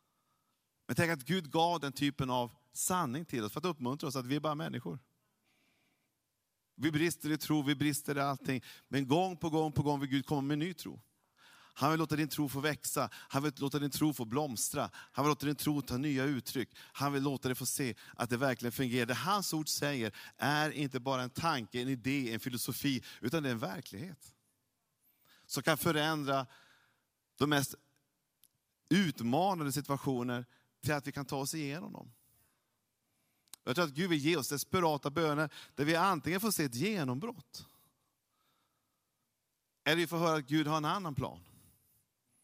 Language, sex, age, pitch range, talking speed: Swedish, male, 30-49, 135-160 Hz, 185 wpm